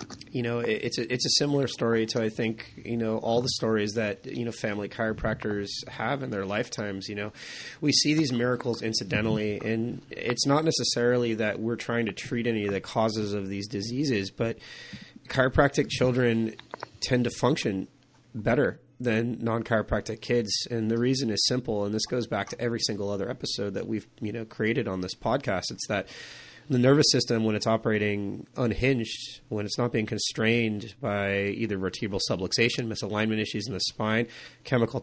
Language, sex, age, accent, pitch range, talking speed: English, male, 30-49, American, 105-120 Hz, 180 wpm